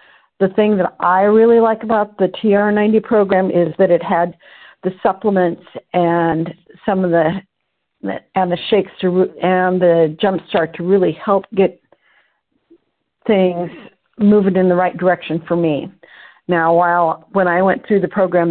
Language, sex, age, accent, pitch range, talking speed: English, female, 50-69, American, 170-195 Hz, 155 wpm